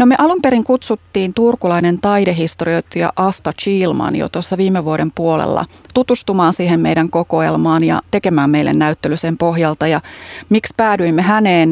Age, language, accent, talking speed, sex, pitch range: 30-49, Finnish, native, 145 wpm, female, 160-200 Hz